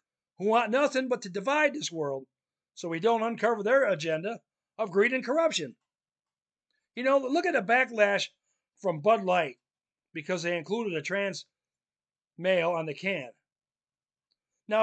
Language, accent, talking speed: English, American, 145 wpm